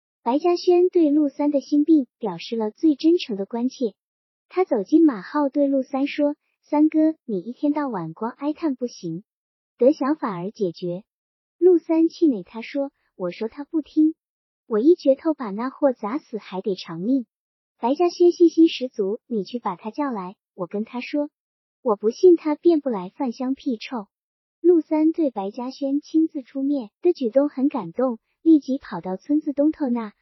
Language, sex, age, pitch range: Chinese, male, 50-69, 220-310 Hz